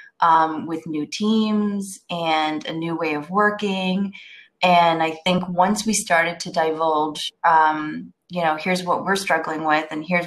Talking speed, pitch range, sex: 165 wpm, 160-185 Hz, female